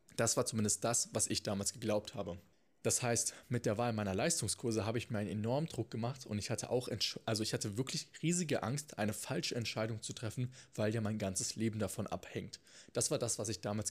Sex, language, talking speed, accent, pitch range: male, German, 205 wpm, German, 105-130 Hz